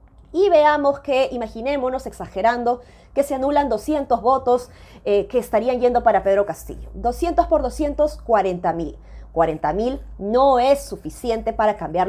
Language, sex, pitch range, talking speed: Spanish, female, 195-265 Hz, 140 wpm